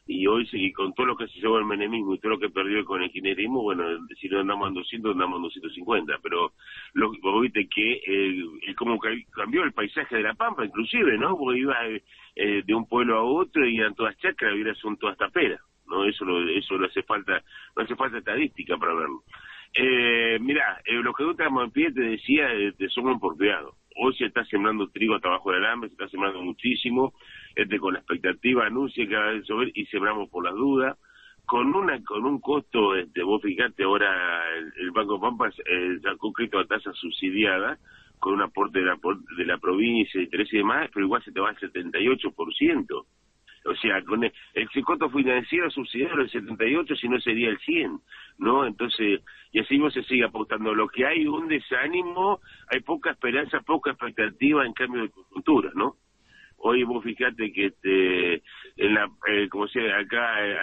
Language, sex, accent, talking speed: Spanish, male, Argentinian, 200 wpm